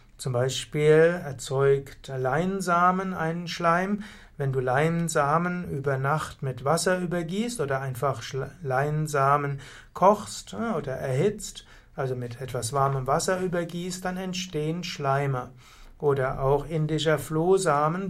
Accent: German